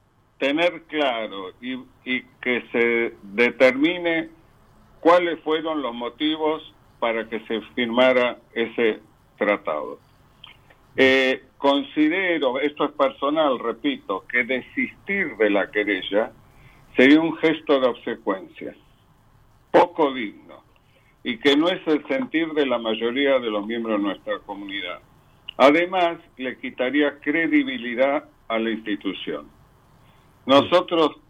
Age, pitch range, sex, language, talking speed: 60-79, 115-160 Hz, male, Spanish, 110 wpm